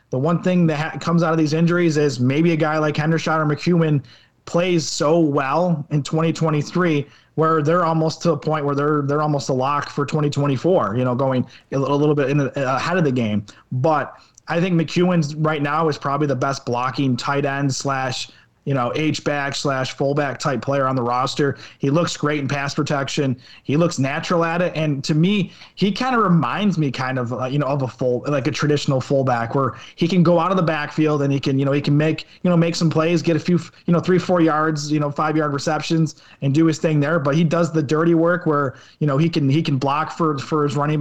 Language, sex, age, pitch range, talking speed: English, male, 20-39, 140-165 Hz, 240 wpm